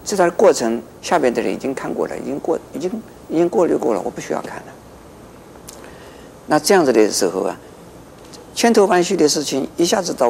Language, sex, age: Chinese, male, 50-69